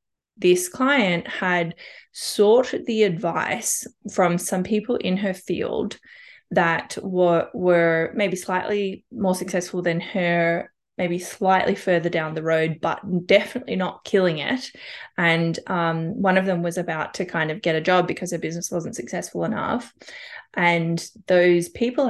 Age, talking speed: 20-39, 145 wpm